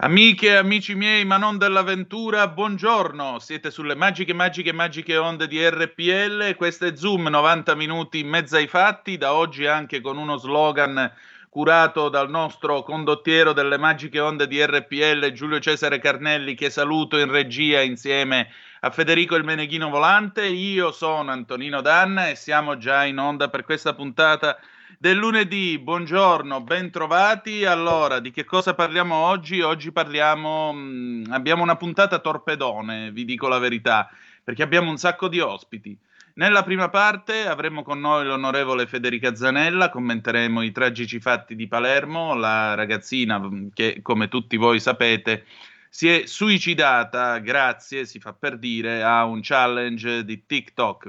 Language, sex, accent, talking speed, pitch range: Italian, male, native, 150 wpm, 125-170 Hz